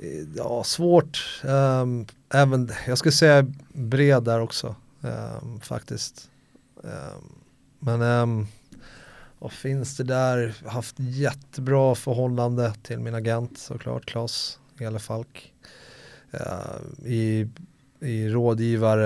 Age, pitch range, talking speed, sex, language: 30-49, 110-130 Hz, 100 wpm, male, Swedish